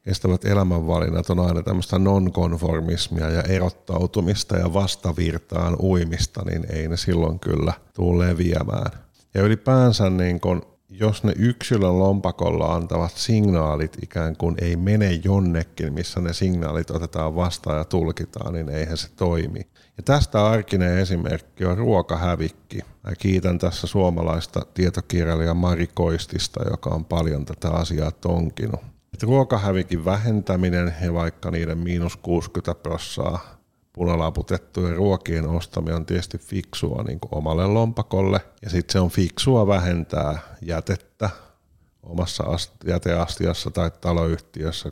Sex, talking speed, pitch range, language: male, 125 wpm, 85-95 Hz, Finnish